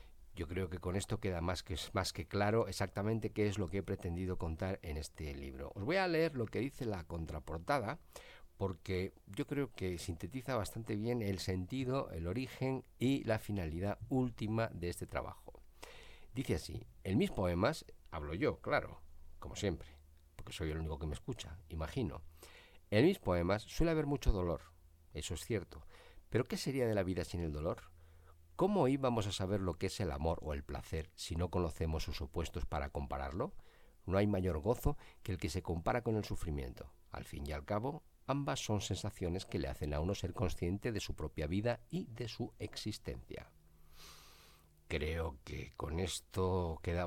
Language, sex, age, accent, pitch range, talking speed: Spanish, male, 50-69, Spanish, 80-105 Hz, 185 wpm